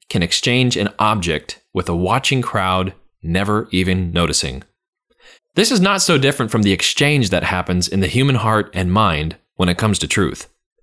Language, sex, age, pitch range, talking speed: English, male, 30-49, 95-140 Hz, 175 wpm